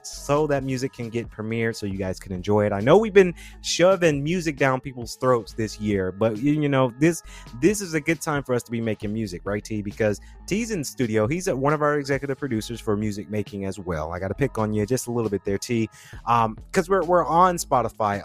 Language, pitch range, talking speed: English, 110-145 Hz, 245 wpm